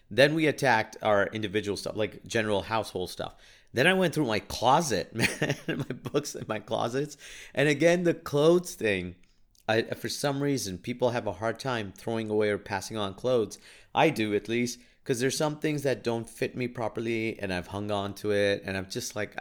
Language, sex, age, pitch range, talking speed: English, male, 40-59, 95-125 Hz, 200 wpm